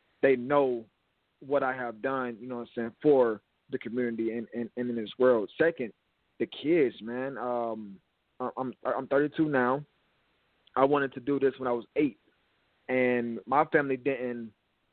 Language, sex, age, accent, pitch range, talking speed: English, male, 20-39, American, 115-135 Hz, 170 wpm